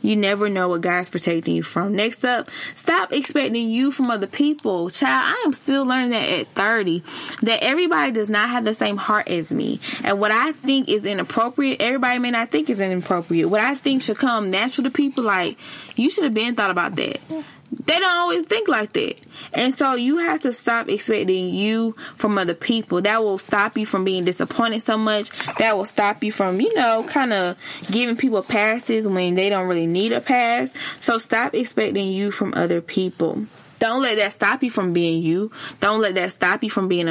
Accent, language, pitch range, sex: American, English, 190-255 Hz, female